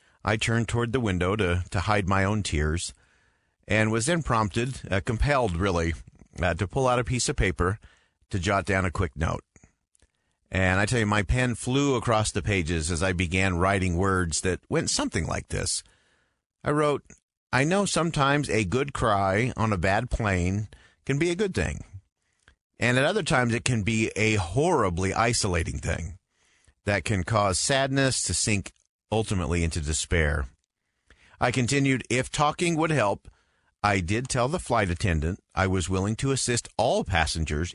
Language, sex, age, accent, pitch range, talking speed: English, male, 40-59, American, 90-120 Hz, 170 wpm